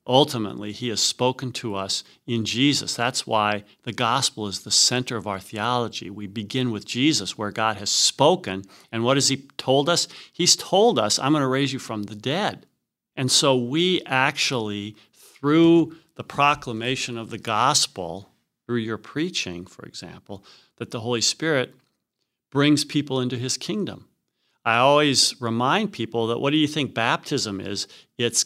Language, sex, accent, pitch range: English, male, American, 115-145 Hz